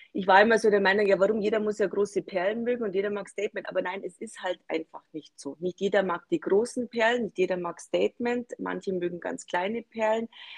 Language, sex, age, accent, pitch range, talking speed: German, female, 30-49, German, 185-215 Hz, 235 wpm